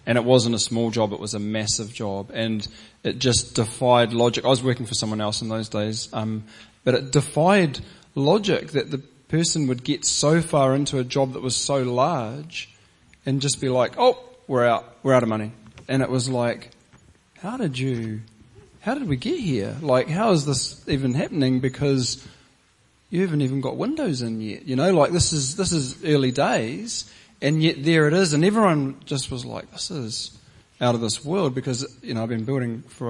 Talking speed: 205 wpm